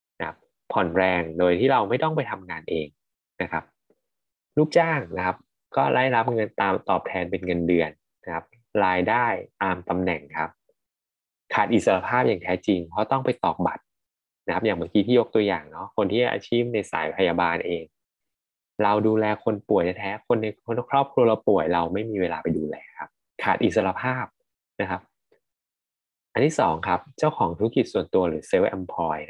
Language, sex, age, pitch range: Thai, male, 20-39, 90-130 Hz